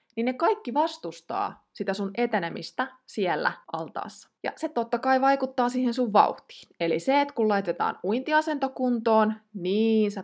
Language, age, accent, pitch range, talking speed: Finnish, 20-39, native, 185-250 Hz, 145 wpm